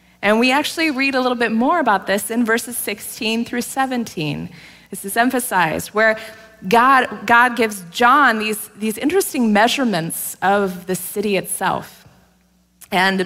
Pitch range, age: 185-250 Hz, 20-39